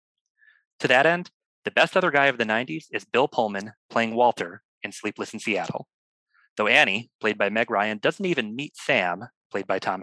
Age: 30-49